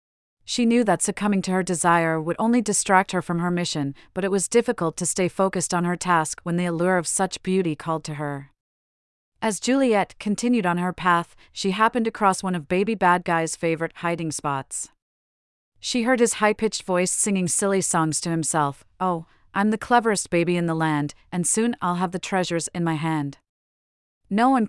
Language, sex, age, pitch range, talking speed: English, female, 40-59, 160-200 Hz, 195 wpm